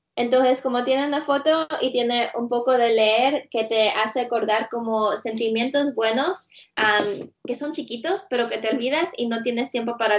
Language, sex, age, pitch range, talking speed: Spanish, female, 20-39, 220-265 Hz, 185 wpm